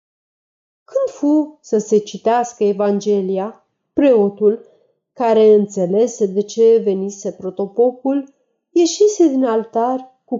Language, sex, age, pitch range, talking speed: Romanian, female, 30-49, 205-265 Hz, 90 wpm